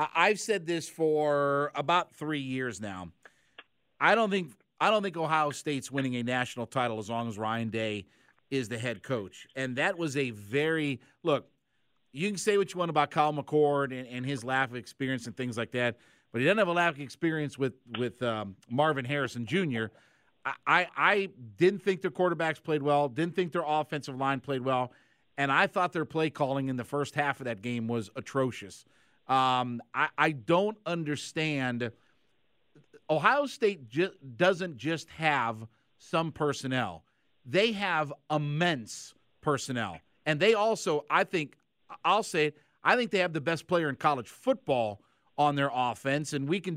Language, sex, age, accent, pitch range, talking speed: English, male, 50-69, American, 130-165 Hz, 175 wpm